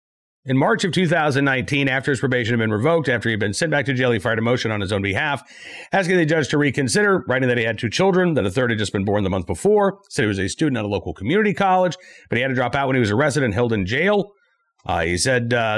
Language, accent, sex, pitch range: English, American, male, 105-150 Hz